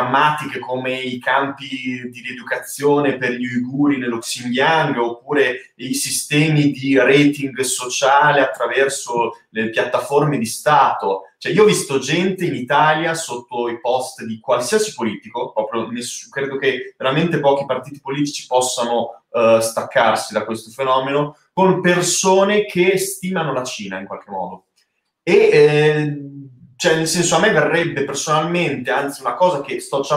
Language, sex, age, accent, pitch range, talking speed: Italian, male, 20-39, native, 125-165 Hz, 140 wpm